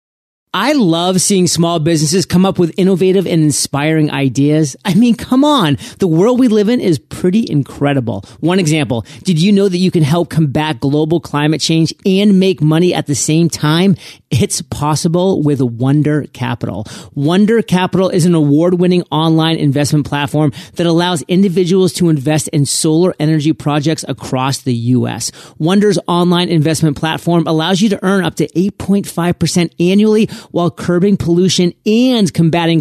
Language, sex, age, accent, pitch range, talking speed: English, male, 30-49, American, 145-180 Hz, 155 wpm